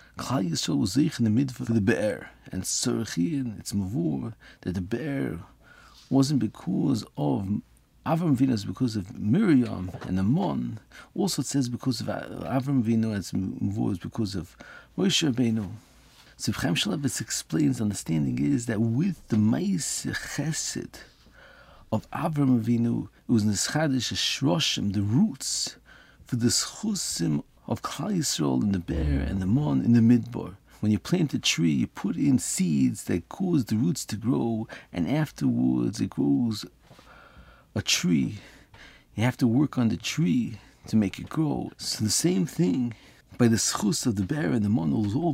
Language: English